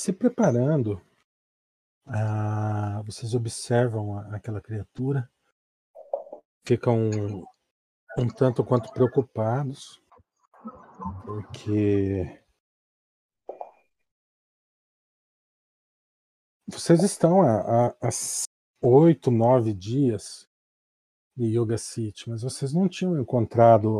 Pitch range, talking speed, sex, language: 110-135 Hz, 75 wpm, male, Portuguese